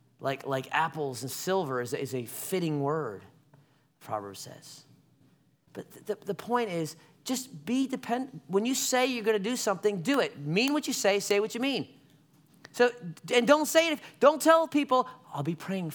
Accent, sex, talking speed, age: American, male, 195 wpm, 30-49